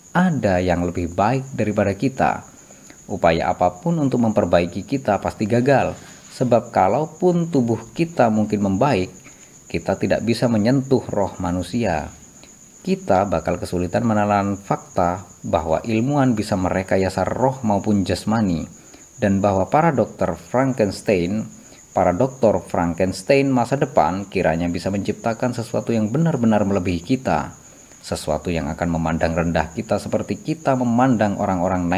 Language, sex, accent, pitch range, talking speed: Indonesian, male, native, 90-120 Hz, 120 wpm